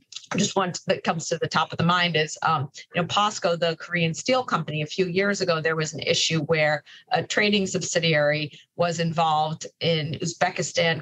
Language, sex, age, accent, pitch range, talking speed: English, female, 40-59, American, 155-190 Hz, 190 wpm